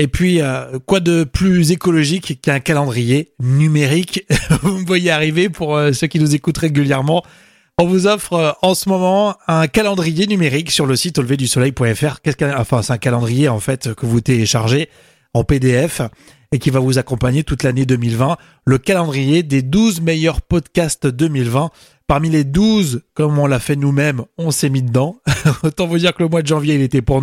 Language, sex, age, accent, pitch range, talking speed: French, male, 30-49, French, 130-170 Hz, 185 wpm